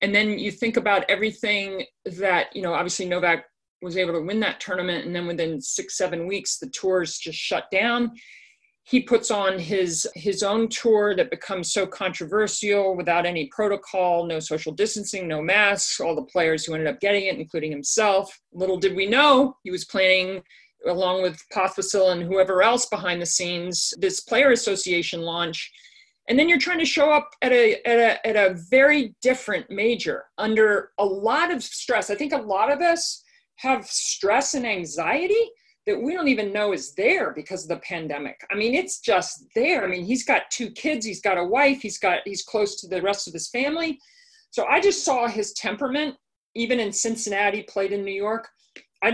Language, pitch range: English, 185-250 Hz